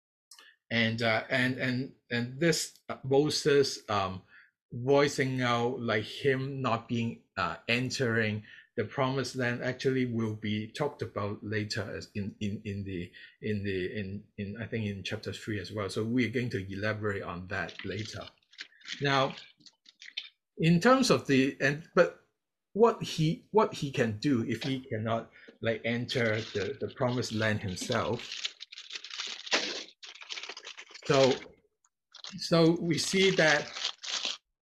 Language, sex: Chinese, male